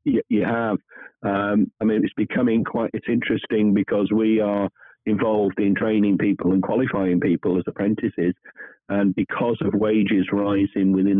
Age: 50-69